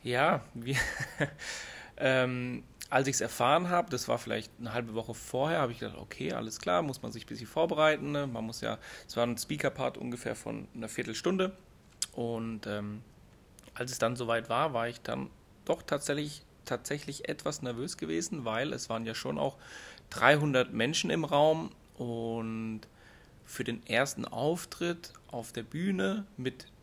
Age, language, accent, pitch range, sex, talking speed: 30-49, German, German, 115-150 Hz, male, 160 wpm